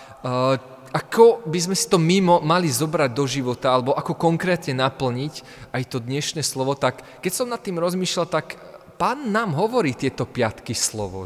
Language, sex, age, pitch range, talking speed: Slovak, male, 20-39, 125-180 Hz, 165 wpm